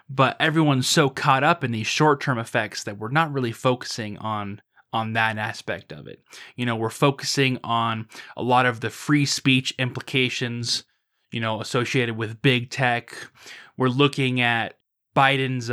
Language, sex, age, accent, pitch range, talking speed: English, male, 20-39, American, 115-140 Hz, 160 wpm